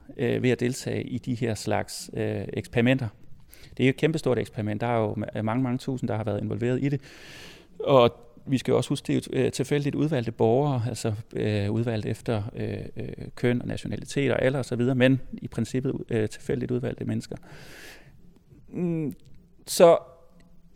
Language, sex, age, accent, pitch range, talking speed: Danish, male, 30-49, native, 110-135 Hz, 175 wpm